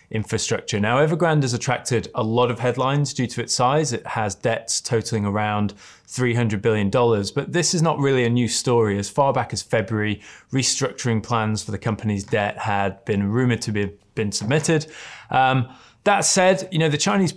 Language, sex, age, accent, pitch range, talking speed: English, male, 20-39, British, 105-135 Hz, 185 wpm